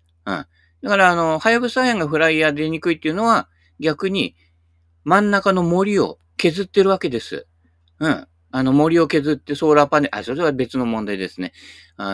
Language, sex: Japanese, male